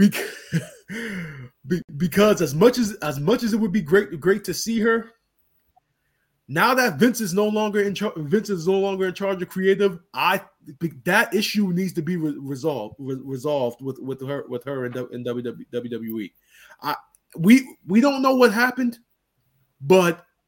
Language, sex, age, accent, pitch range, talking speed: English, male, 20-39, American, 155-210 Hz, 155 wpm